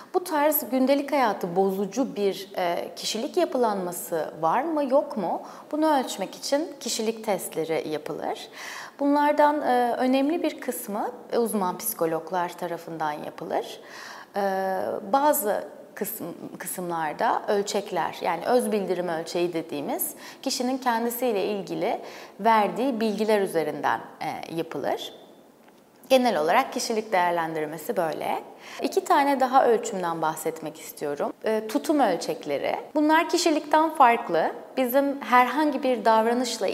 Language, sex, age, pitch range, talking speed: Turkish, female, 30-49, 185-260 Hz, 100 wpm